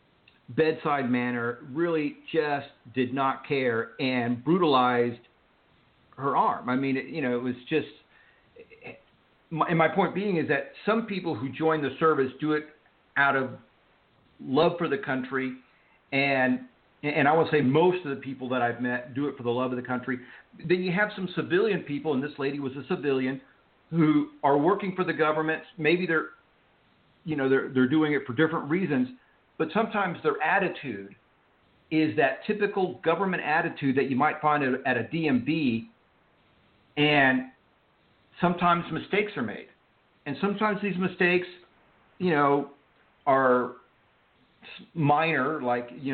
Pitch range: 130-170 Hz